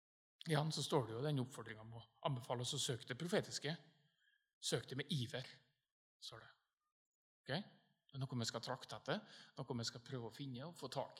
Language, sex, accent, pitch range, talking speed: English, male, Norwegian, 125-160 Hz, 205 wpm